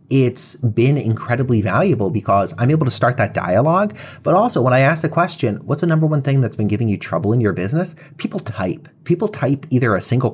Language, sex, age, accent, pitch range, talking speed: English, male, 30-49, American, 105-155 Hz, 220 wpm